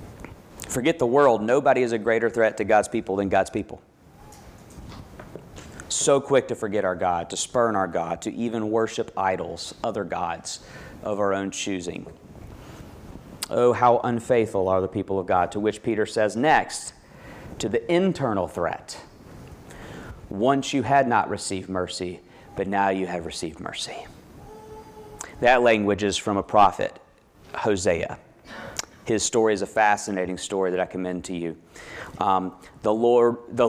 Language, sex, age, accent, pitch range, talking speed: English, male, 40-59, American, 100-120 Hz, 150 wpm